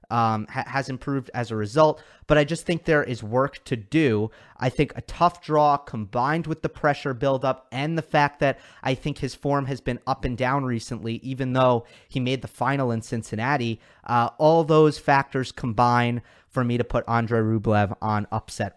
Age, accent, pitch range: 30-49, American, 115-140 Hz